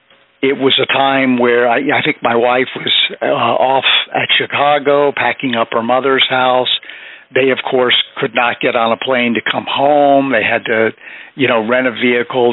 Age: 50-69